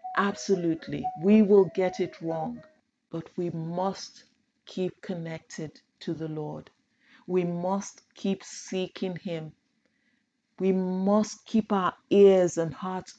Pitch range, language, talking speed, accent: 175-230 Hz, English, 120 wpm, Nigerian